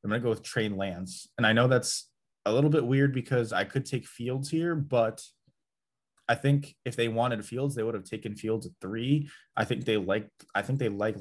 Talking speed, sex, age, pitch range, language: 230 wpm, male, 20-39, 100-130 Hz, English